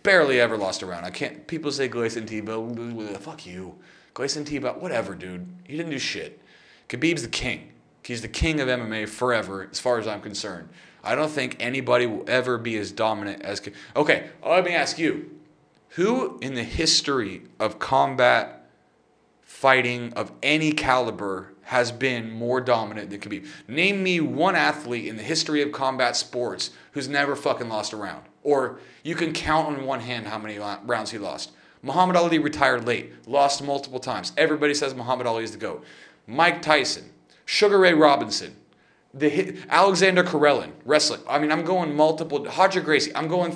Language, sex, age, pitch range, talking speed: English, male, 30-49, 110-150 Hz, 175 wpm